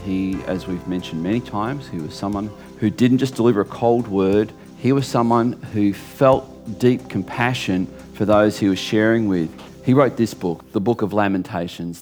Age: 40-59